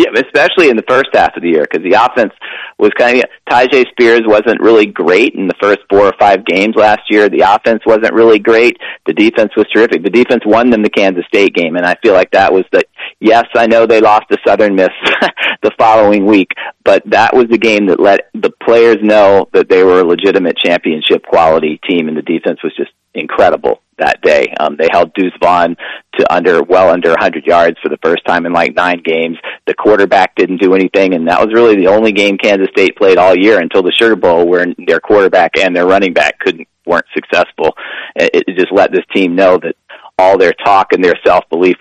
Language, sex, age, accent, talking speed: English, male, 40-59, American, 220 wpm